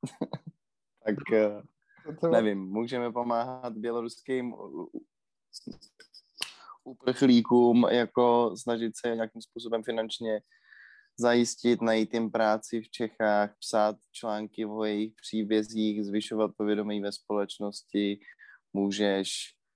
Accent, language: native, Czech